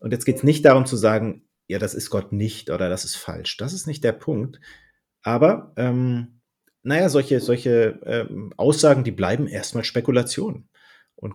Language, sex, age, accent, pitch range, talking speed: German, male, 30-49, German, 100-130 Hz, 180 wpm